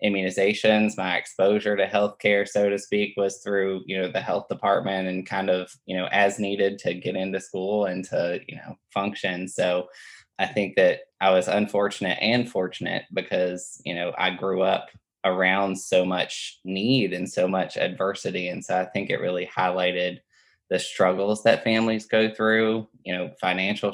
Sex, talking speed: male, 175 wpm